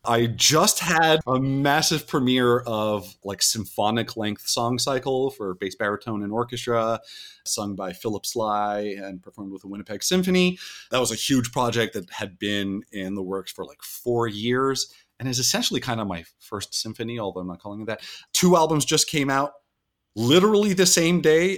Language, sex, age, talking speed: English, male, 30-49, 180 wpm